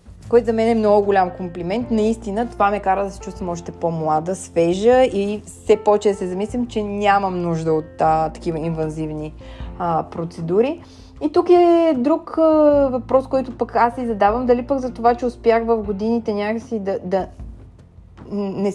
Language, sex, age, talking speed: Bulgarian, female, 20-39, 175 wpm